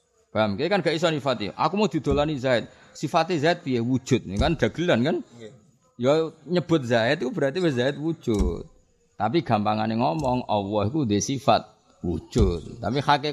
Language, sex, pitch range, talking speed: Indonesian, male, 95-135 Hz, 145 wpm